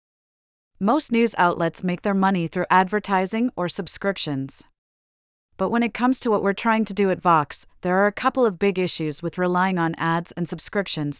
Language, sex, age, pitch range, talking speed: English, female, 30-49, 165-205 Hz, 190 wpm